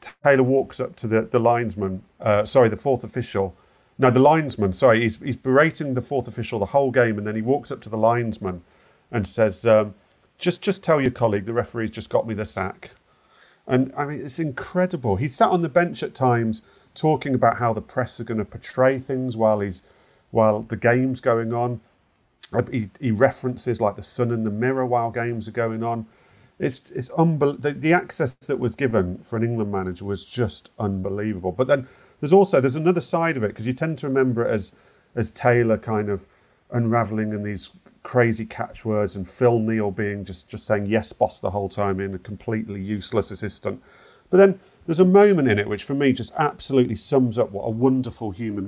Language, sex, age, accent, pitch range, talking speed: English, male, 40-59, British, 105-135 Hz, 205 wpm